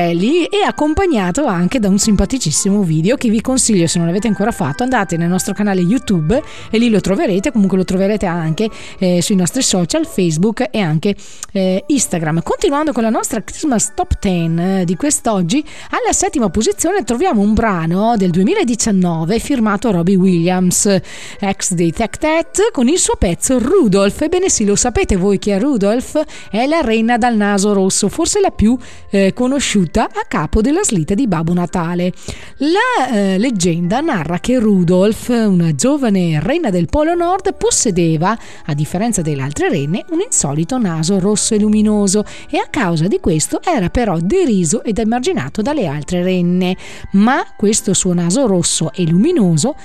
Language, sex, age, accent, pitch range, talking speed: Italian, female, 30-49, native, 185-255 Hz, 165 wpm